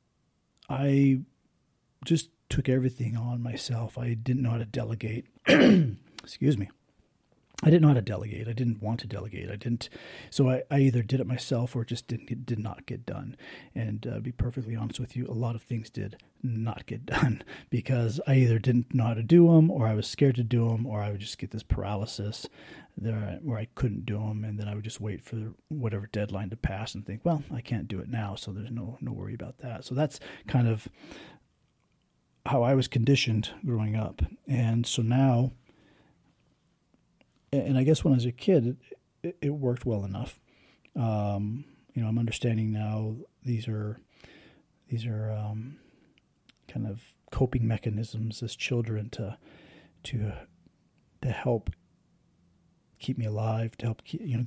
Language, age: English, 40-59